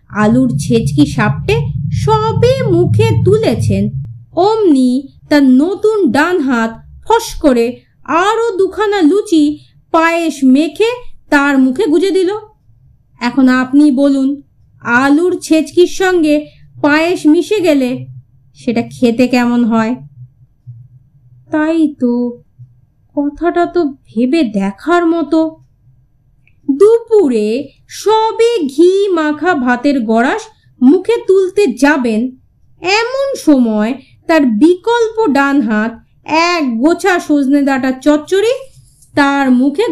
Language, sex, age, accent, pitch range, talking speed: Bengali, female, 30-49, native, 225-360 Hz, 65 wpm